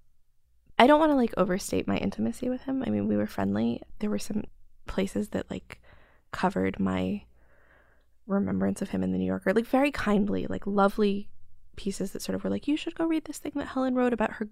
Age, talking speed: 20-39, 215 wpm